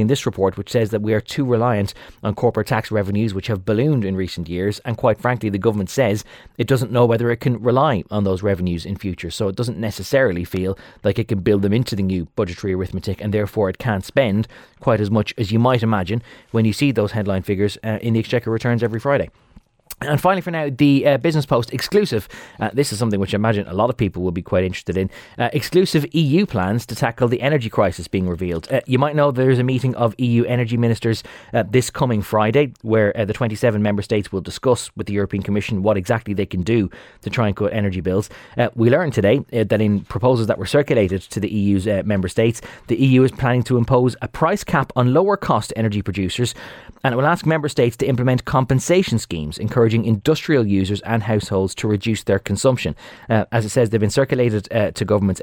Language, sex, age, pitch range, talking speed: English, male, 30-49, 100-125 Hz, 230 wpm